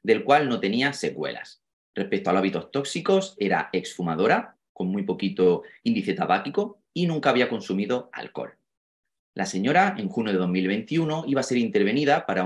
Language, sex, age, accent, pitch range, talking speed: German, male, 30-49, Spanish, 95-155 Hz, 160 wpm